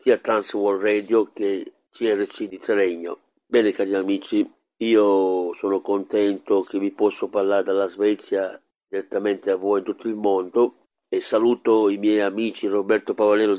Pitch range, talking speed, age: 105-130 Hz, 145 wpm, 50-69